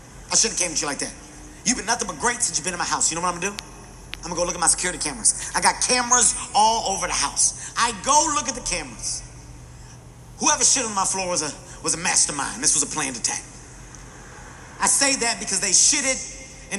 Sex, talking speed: male, 245 wpm